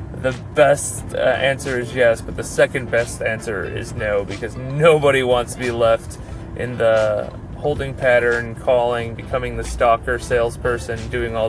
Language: English